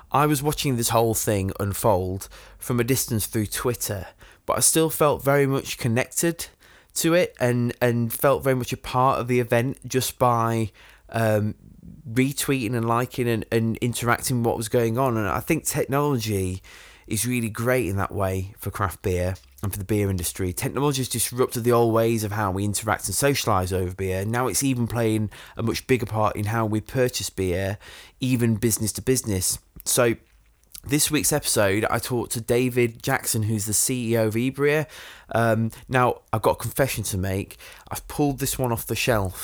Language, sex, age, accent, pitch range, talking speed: English, male, 20-39, British, 105-125 Hz, 185 wpm